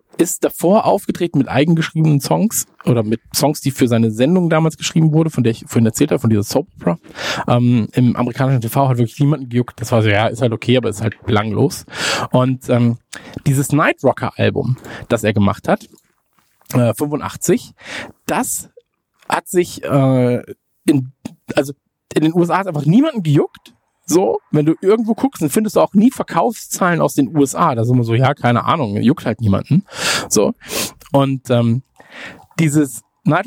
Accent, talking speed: German, 175 wpm